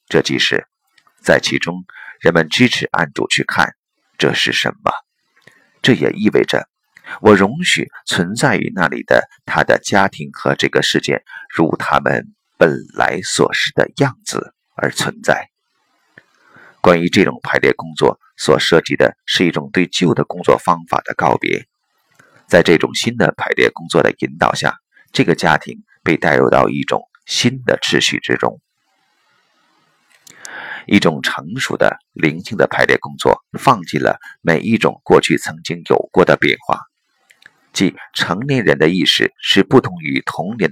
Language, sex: Chinese, male